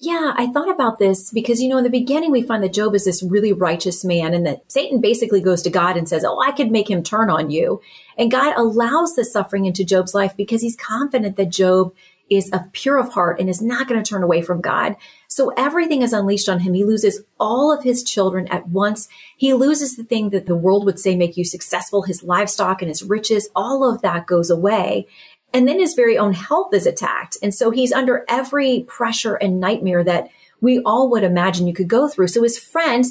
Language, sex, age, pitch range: English, female, 30-49, 185-245 Hz